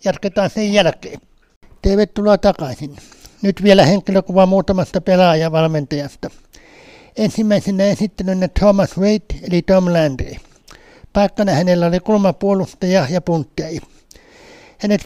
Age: 60-79